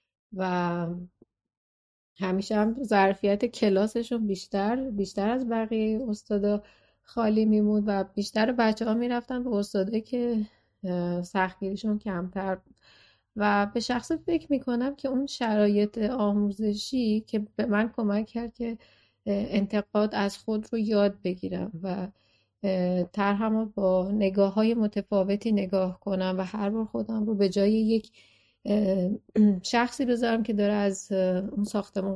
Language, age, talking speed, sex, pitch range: Persian, 30-49, 125 wpm, female, 190-220 Hz